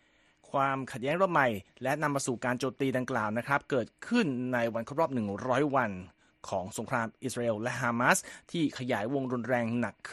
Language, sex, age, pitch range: Thai, male, 30-49, 120-150 Hz